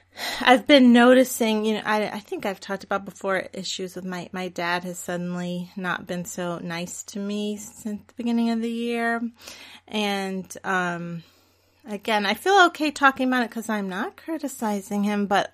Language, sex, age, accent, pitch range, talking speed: English, female, 30-49, American, 190-240 Hz, 180 wpm